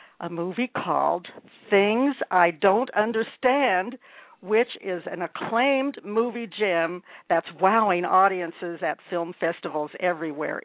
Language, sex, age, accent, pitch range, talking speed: English, female, 60-79, American, 170-225 Hz, 115 wpm